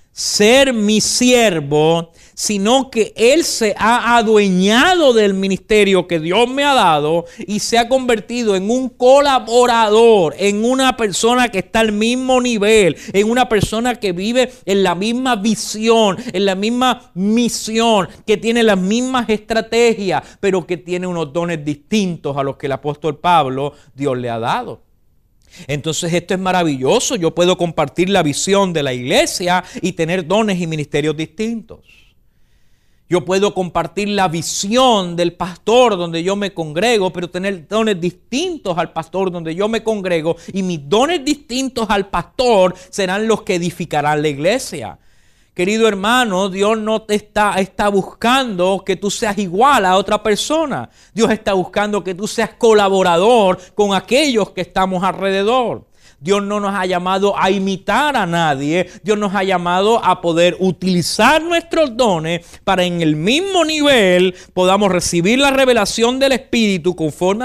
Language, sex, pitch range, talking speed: English, male, 175-225 Hz, 155 wpm